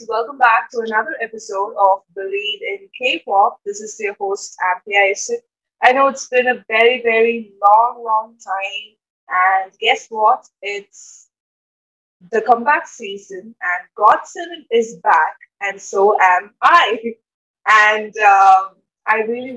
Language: English